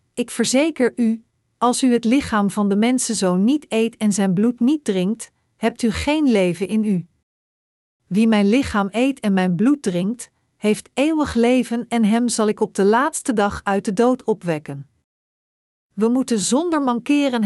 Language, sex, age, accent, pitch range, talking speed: Dutch, female, 50-69, Dutch, 200-245 Hz, 170 wpm